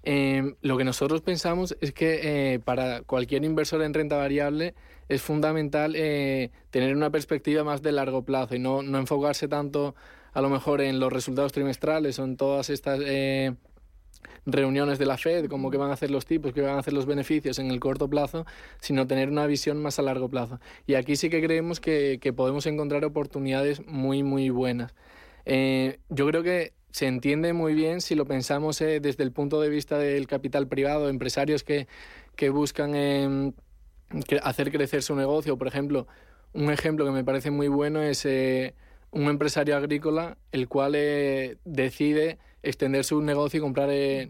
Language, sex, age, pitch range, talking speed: Spanish, male, 20-39, 135-150 Hz, 185 wpm